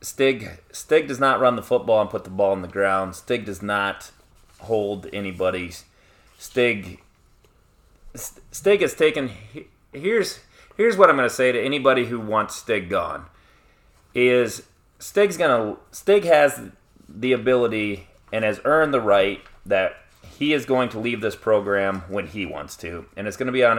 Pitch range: 100-140 Hz